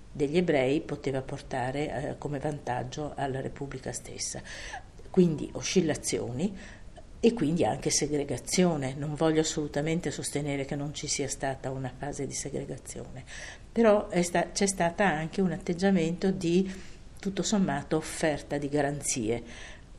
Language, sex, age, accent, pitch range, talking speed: Italian, female, 50-69, native, 135-165 Hz, 125 wpm